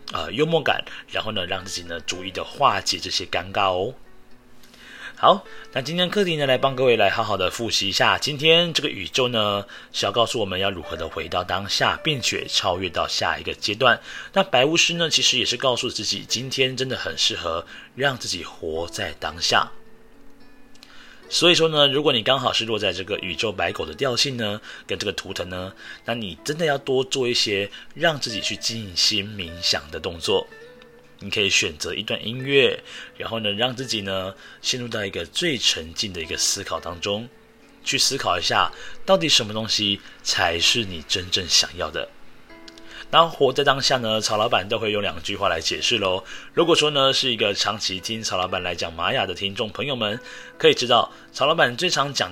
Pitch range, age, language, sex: 100-145 Hz, 30-49, Chinese, male